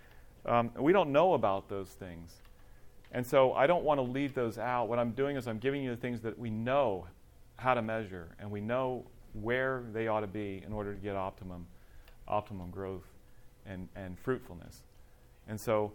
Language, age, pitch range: English, 40-59, 95-115 Hz